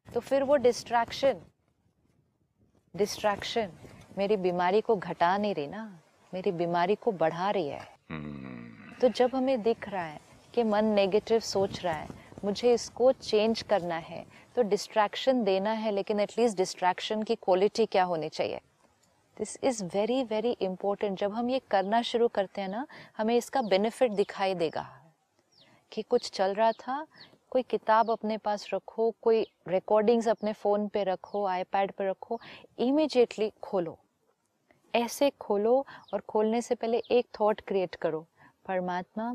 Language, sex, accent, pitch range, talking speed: Hindi, female, native, 190-235 Hz, 150 wpm